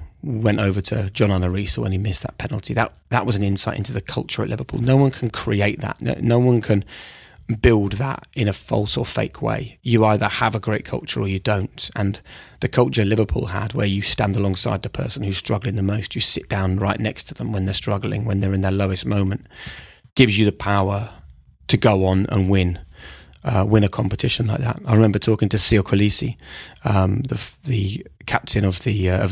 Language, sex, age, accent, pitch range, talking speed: English, male, 30-49, British, 95-115 Hz, 215 wpm